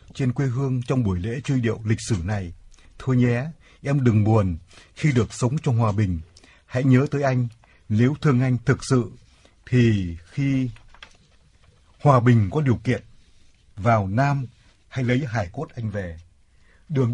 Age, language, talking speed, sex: 60-79, Vietnamese, 165 wpm, male